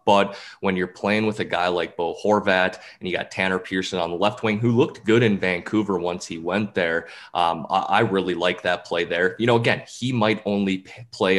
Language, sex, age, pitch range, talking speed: English, male, 20-39, 90-105 Hz, 220 wpm